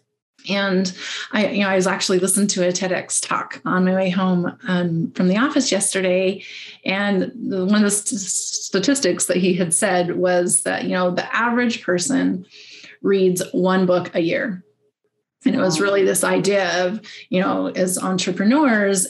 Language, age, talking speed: English, 30-49, 170 wpm